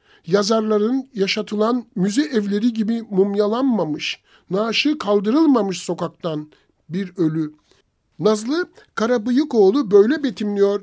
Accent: native